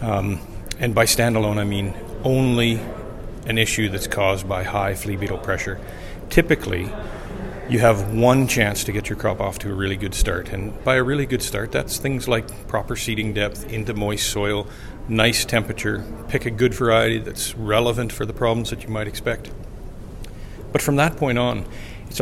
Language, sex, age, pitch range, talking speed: English, male, 40-59, 105-120 Hz, 180 wpm